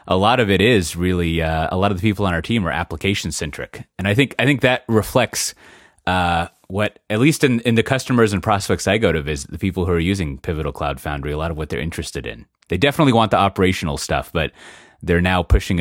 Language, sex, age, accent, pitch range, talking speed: English, male, 30-49, American, 80-105 Hz, 245 wpm